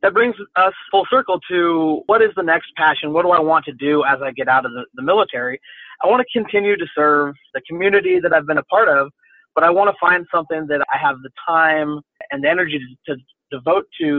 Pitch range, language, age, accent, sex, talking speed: 135-175 Hz, English, 30-49, American, male, 240 wpm